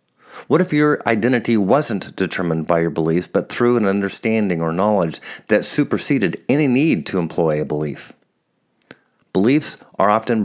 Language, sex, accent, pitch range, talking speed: English, male, American, 90-115 Hz, 150 wpm